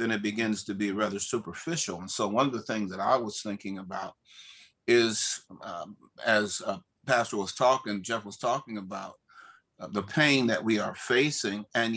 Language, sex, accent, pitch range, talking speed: English, male, American, 105-140 Hz, 185 wpm